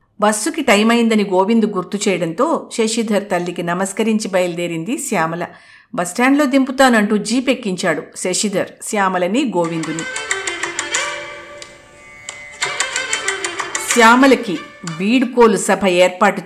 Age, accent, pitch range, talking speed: 50-69, native, 180-245 Hz, 75 wpm